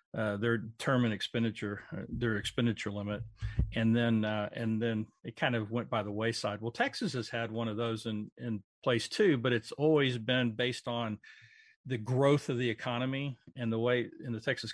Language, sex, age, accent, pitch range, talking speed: English, male, 40-59, American, 110-135 Hz, 195 wpm